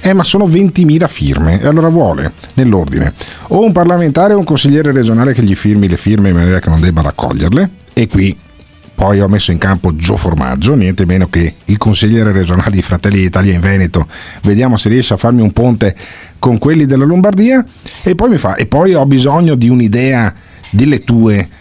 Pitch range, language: 90-135 Hz, Italian